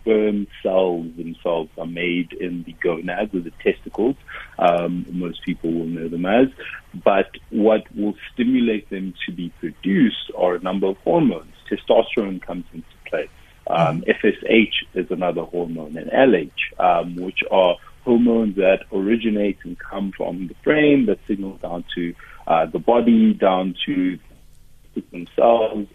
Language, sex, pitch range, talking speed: English, male, 85-105 Hz, 145 wpm